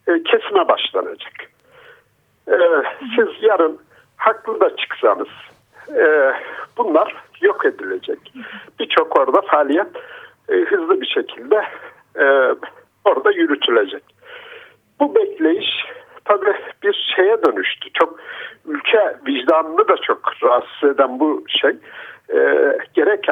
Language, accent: Turkish, native